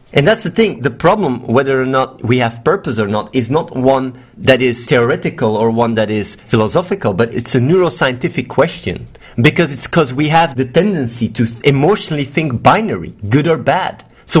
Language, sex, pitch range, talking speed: English, male, 125-175 Hz, 185 wpm